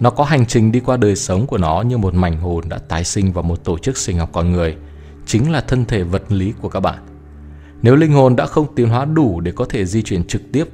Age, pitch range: 20-39, 90-115 Hz